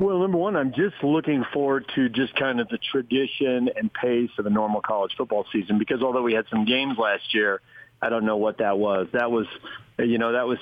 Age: 40-59